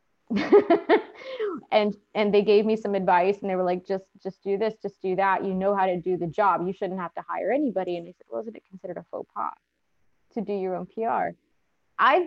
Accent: American